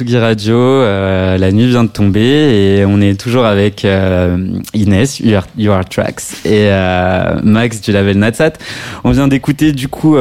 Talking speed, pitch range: 155 wpm, 100-120 Hz